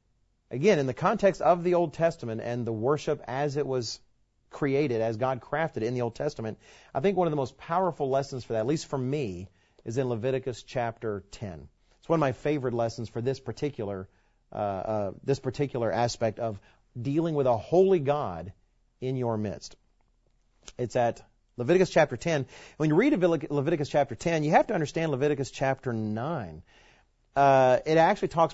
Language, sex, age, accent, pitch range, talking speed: English, male, 40-59, American, 115-150 Hz, 185 wpm